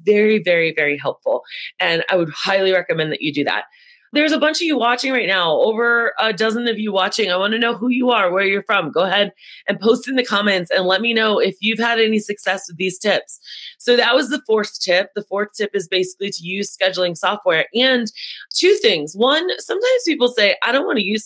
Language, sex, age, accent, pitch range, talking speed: English, female, 30-49, American, 180-240 Hz, 235 wpm